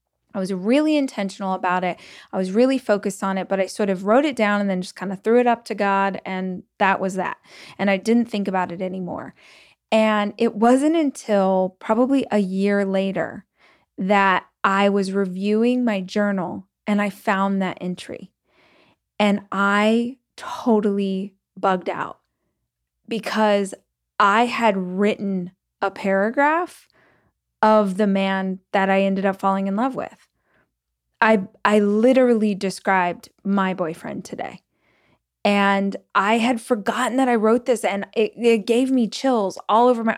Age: 20-39